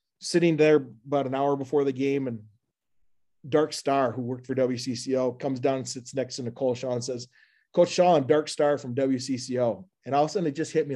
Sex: male